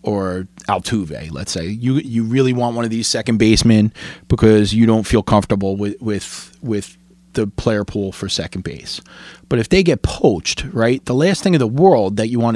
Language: English